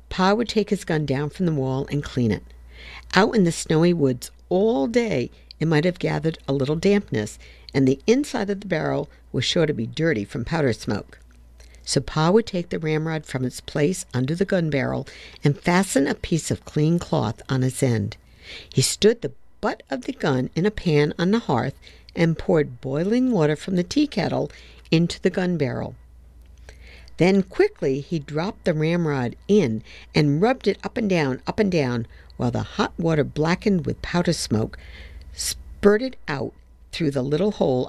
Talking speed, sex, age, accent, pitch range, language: 185 wpm, female, 60-79, American, 115-180 Hz, English